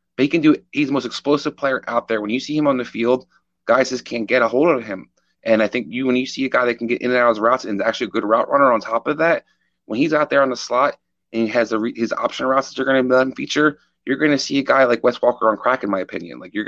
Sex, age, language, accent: male, 20-39, English, American